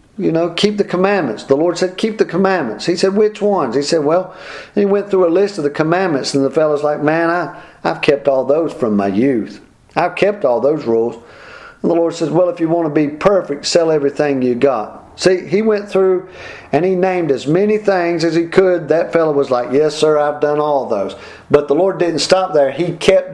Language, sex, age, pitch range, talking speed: English, male, 50-69, 140-185 Hz, 235 wpm